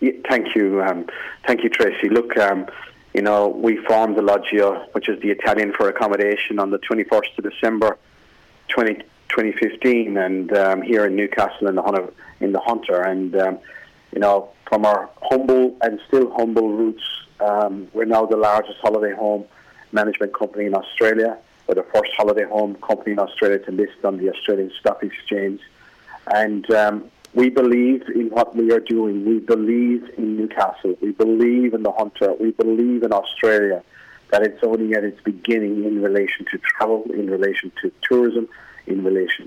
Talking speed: 170 wpm